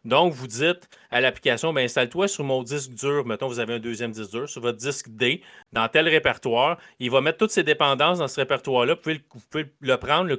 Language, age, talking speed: French, 30-49, 245 wpm